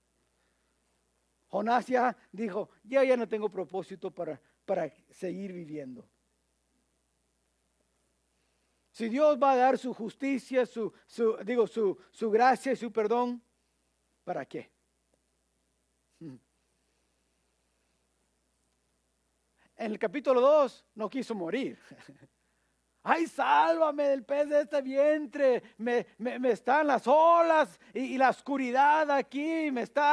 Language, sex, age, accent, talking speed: English, male, 50-69, Mexican, 110 wpm